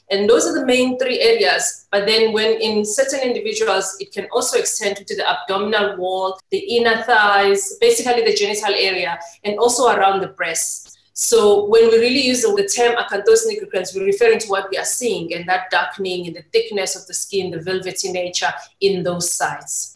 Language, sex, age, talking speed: English, female, 30-49, 190 wpm